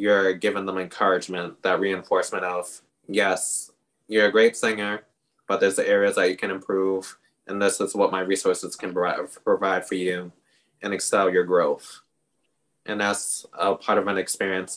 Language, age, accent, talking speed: English, 20-39, American, 165 wpm